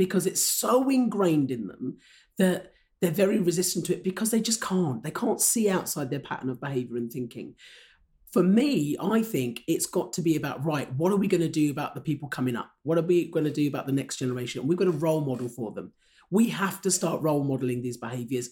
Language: English